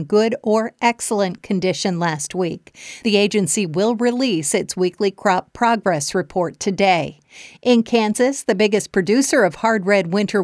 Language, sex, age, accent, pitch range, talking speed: English, female, 50-69, American, 185-220 Hz, 145 wpm